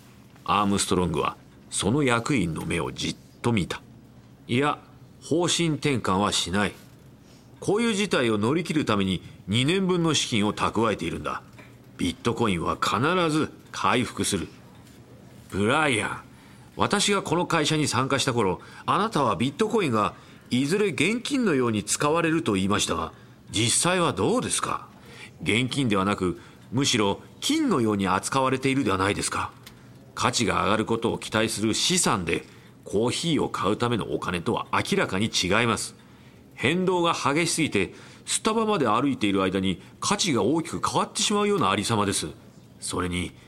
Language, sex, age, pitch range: Japanese, male, 40-59, 100-165 Hz